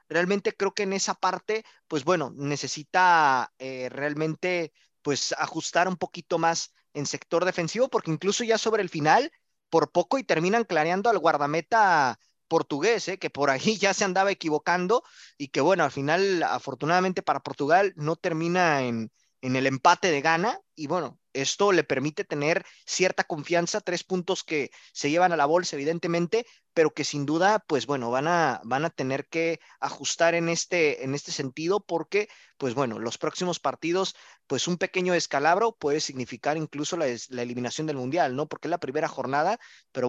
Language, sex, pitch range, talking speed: Spanish, male, 145-180 Hz, 175 wpm